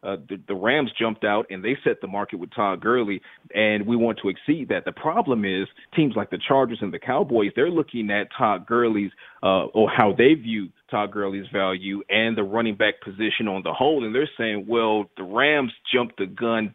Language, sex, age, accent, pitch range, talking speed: English, male, 40-59, American, 100-125 Hz, 215 wpm